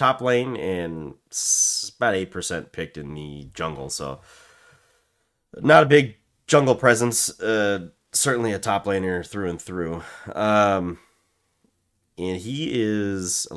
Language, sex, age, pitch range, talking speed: English, male, 30-49, 85-110 Hz, 125 wpm